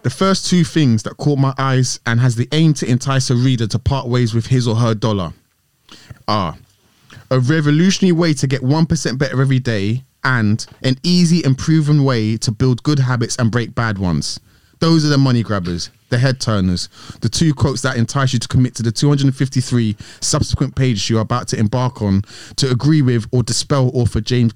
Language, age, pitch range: English, 20-39, 115-135 Hz